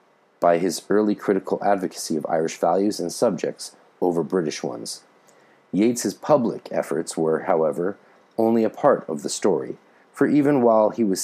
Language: English